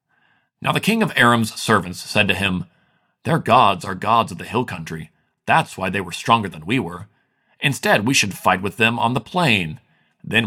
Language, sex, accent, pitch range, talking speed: English, male, American, 95-135 Hz, 200 wpm